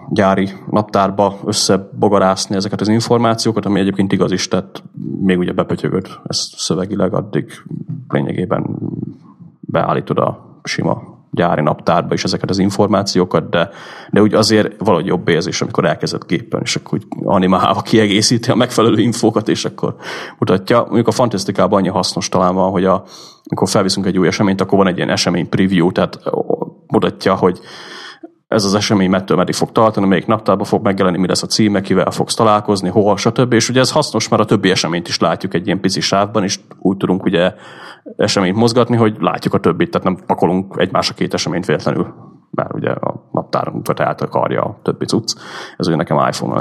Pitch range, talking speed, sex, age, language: 95-110 Hz, 175 wpm, male, 30-49, Hungarian